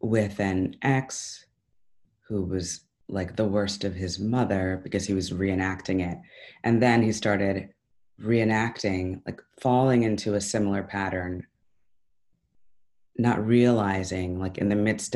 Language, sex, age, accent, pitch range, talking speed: English, female, 30-49, American, 95-120 Hz, 130 wpm